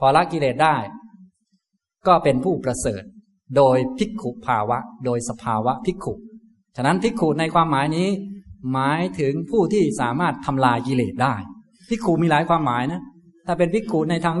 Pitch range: 130-185 Hz